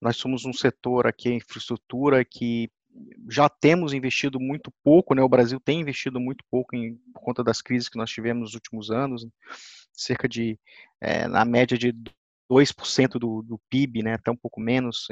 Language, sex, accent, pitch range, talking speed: Portuguese, male, Brazilian, 115-140 Hz, 175 wpm